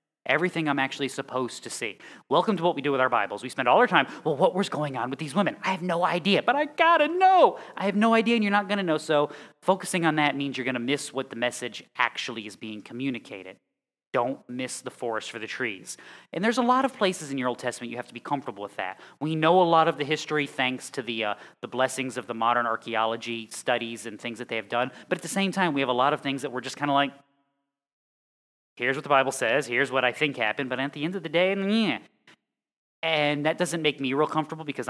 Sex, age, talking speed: male, 30-49, 260 wpm